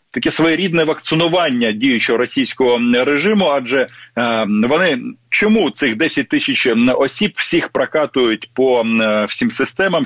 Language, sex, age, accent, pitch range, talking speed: Russian, male, 40-59, native, 125-210 Hz, 105 wpm